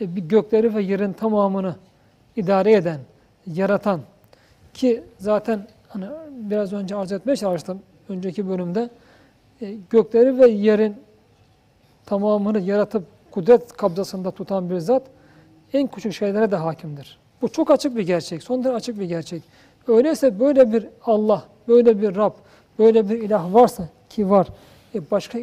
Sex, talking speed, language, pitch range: male, 135 wpm, Turkish, 190-235 Hz